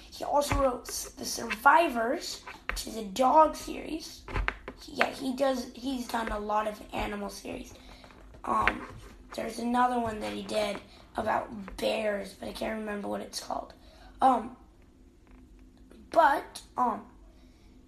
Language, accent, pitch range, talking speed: English, American, 215-275 Hz, 130 wpm